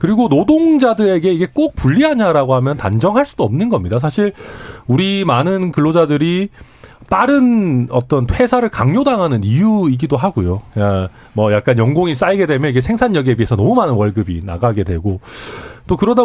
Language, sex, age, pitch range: Korean, male, 40-59, 115-185 Hz